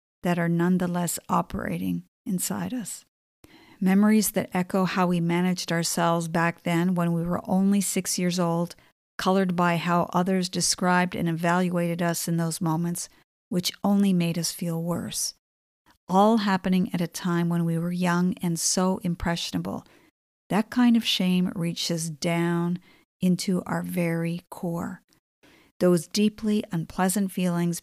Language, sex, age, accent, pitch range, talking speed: English, female, 50-69, American, 170-195 Hz, 140 wpm